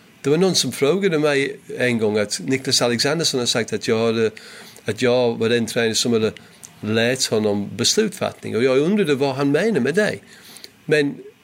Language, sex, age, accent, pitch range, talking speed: Swedish, male, 40-59, British, 120-150 Hz, 185 wpm